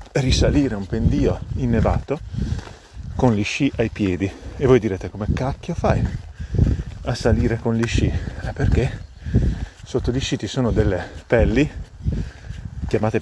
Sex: male